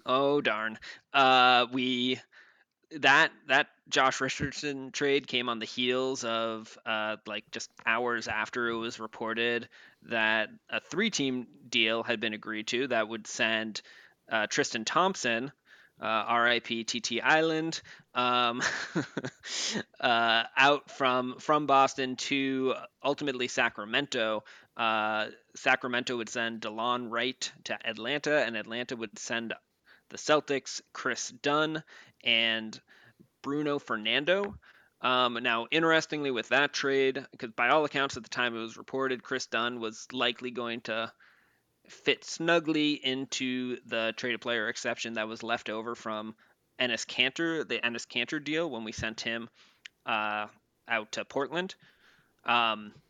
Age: 20-39